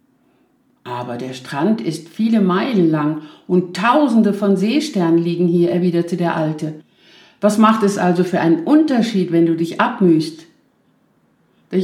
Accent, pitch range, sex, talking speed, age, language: German, 165-210 Hz, female, 140 wpm, 50-69, German